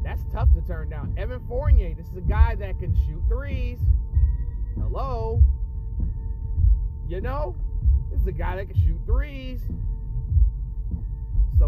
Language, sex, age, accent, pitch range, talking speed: English, male, 30-49, American, 75-90 Hz, 140 wpm